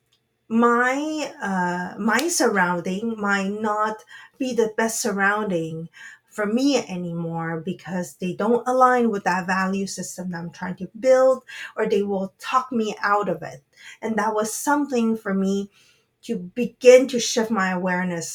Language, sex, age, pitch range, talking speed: English, female, 30-49, 190-235 Hz, 150 wpm